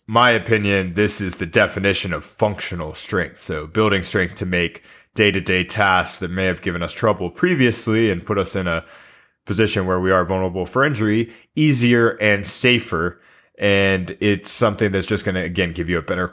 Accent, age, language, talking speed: American, 20-39, English, 185 wpm